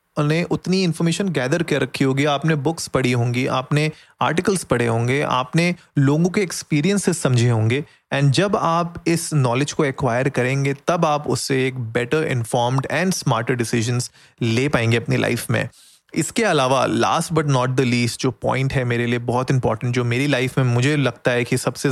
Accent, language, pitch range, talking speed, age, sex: native, Hindi, 125-160 Hz, 180 wpm, 30-49, male